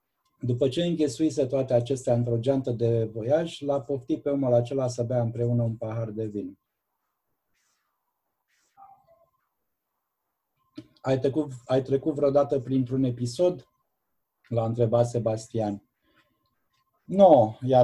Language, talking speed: Romanian, 110 wpm